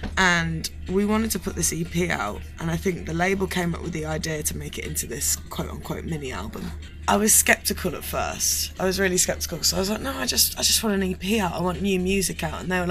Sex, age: female, 20-39